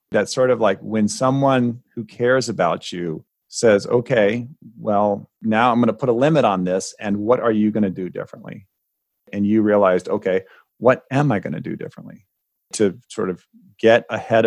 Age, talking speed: 40-59, 190 wpm